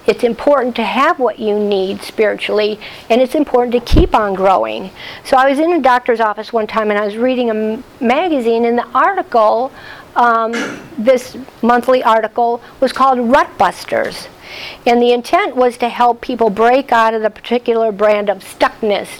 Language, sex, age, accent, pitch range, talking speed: English, female, 50-69, American, 220-260 Hz, 175 wpm